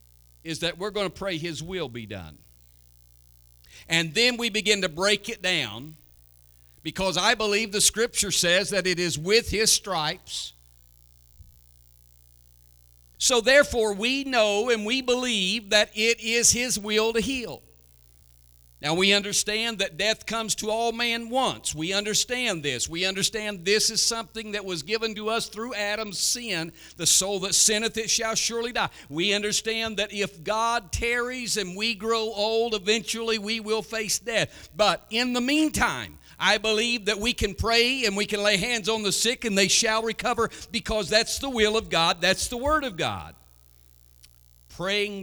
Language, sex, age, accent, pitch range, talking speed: English, male, 50-69, American, 145-225 Hz, 170 wpm